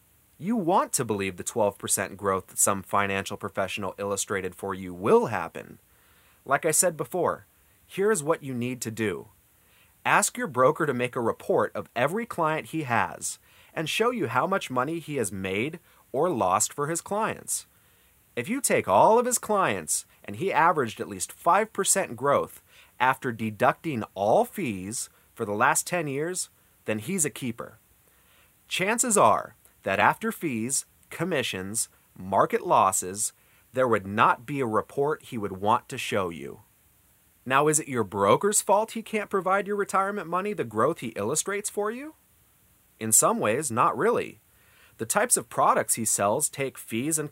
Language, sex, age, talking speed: English, male, 30-49, 165 wpm